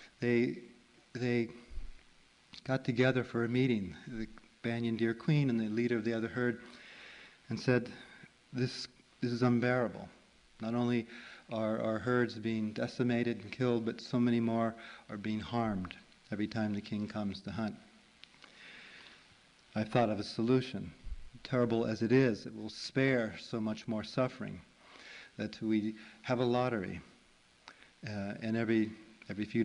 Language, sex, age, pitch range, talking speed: English, male, 40-59, 110-125 Hz, 150 wpm